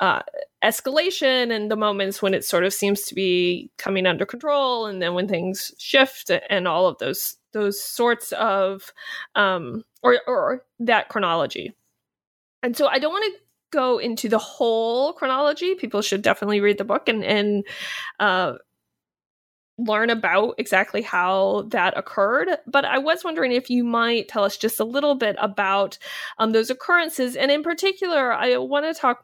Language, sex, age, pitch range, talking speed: English, female, 20-39, 200-255 Hz, 170 wpm